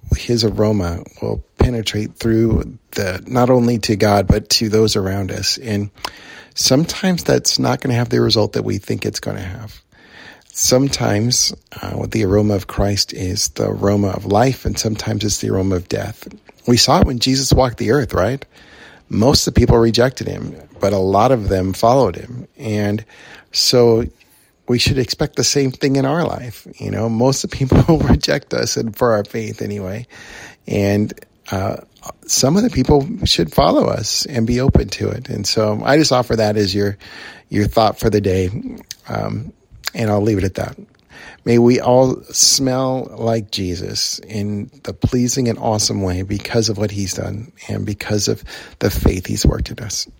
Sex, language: male, English